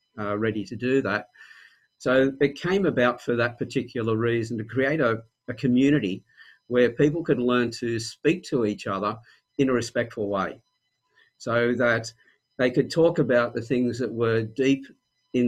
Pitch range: 115-130 Hz